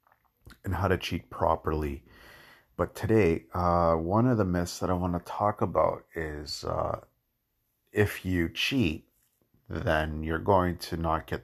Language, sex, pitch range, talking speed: English, male, 85-110 Hz, 150 wpm